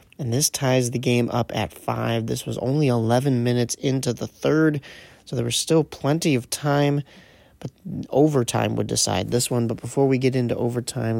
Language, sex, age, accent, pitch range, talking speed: English, male, 30-49, American, 120-140 Hz, 190 wpm